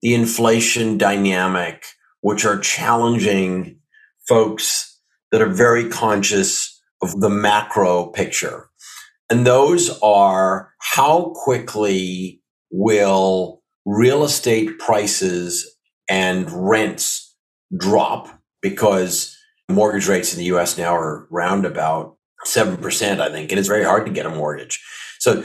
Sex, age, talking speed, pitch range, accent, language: male, 50-69, 115 wpm, 95-115 Hz, American, English